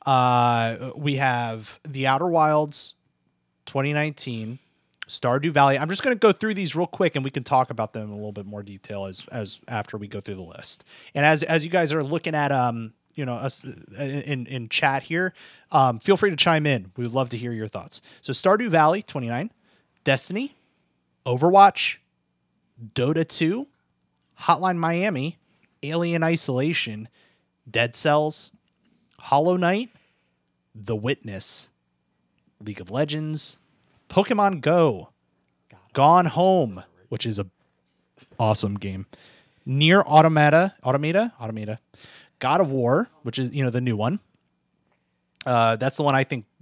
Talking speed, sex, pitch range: 150 wpm, male, 105-160 Hz